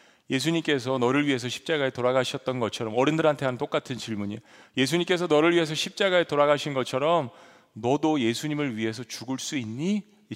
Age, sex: 40-59, male